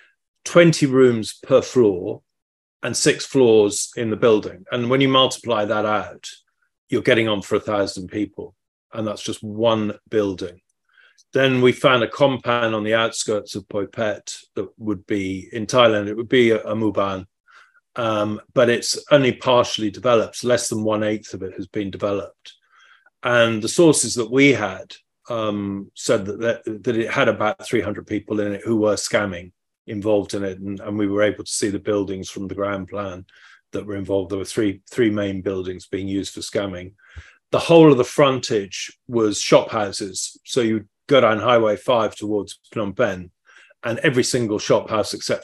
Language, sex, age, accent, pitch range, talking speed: English, male, 30-49, British, 100-115 Hz, 180 wpm